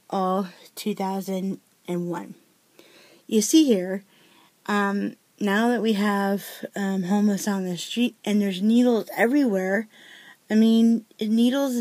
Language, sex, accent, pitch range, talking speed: English, female, American, 190-225 Hz, 115 wpm